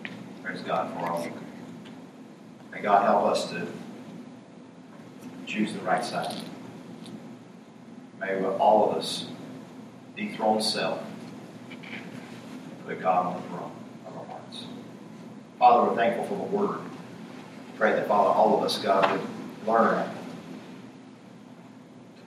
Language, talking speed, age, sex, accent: English, 120 wpm, 40-59, male, American